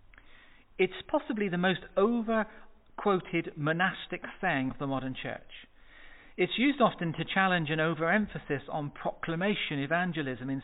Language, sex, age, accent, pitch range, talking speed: English, male, 40-59, British, 150-200 Hz, 130 wpm